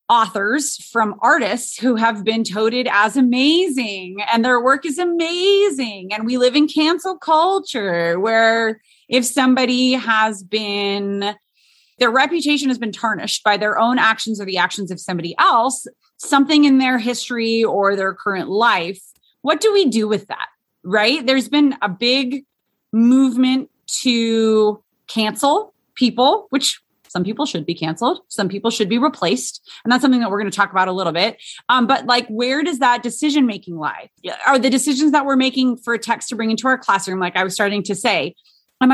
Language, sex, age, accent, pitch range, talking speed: English, female, 30-49, American, 205-275 Hz, 180 wpm